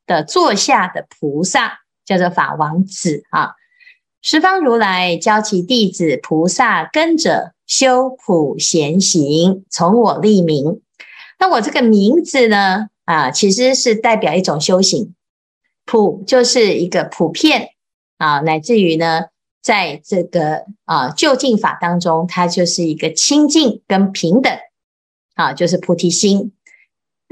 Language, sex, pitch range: Chinese, female, 170-240 Hz